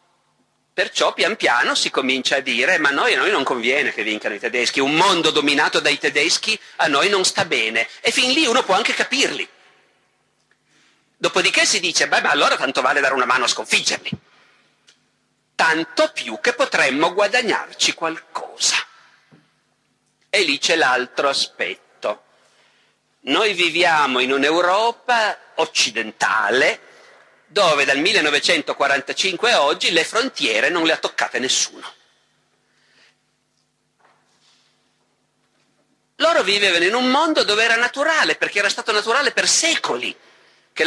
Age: 50-69